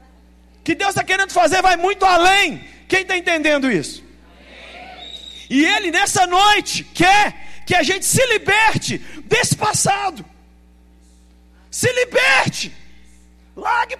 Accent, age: Brazilian, 50-69